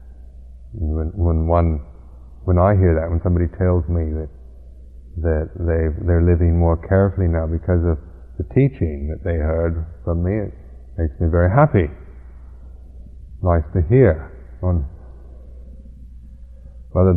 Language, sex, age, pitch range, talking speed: English, male, 50-69, 65-90 Hz, 125 wpm